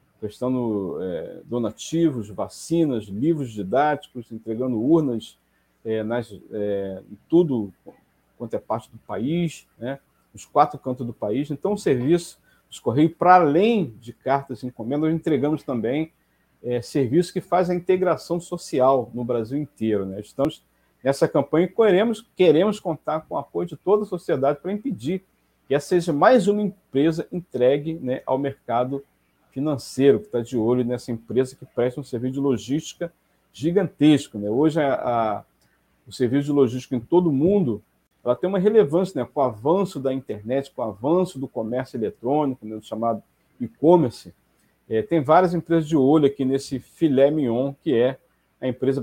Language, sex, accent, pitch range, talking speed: Portuguese, male, Brazilian, 120-170 Hz, 160 wpm